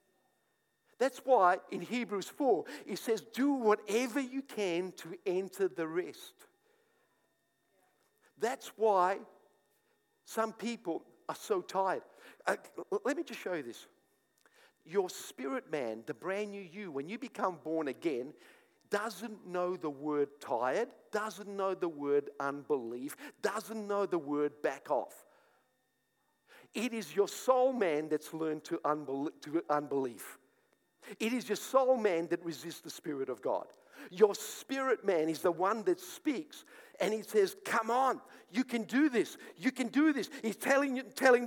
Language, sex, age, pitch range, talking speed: English, male, 50-69, 180-295 Hz, 145 wpm